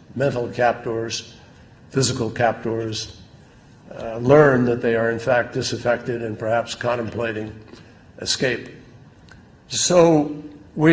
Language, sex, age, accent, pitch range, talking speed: English, male, 60-79, American, 120-145 Hz, 100 wpm